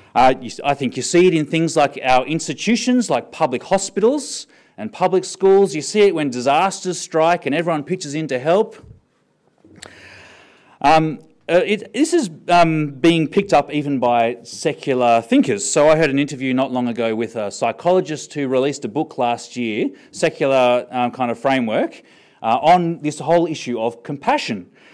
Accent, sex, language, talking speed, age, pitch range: Australian, male, English, 170 wpm, 30-49, 125-165 Hz